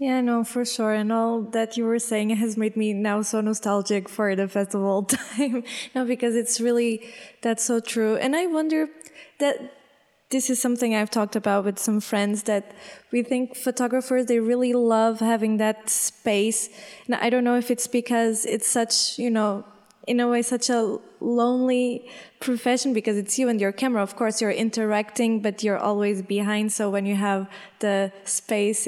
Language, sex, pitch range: Portuguese, female, 205-245 Hz